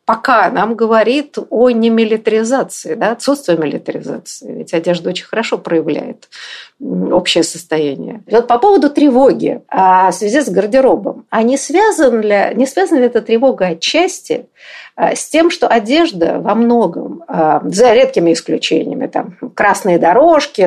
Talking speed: 130 wpm